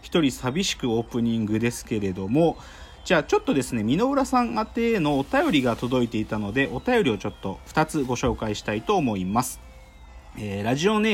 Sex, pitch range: male, 110-190 Hz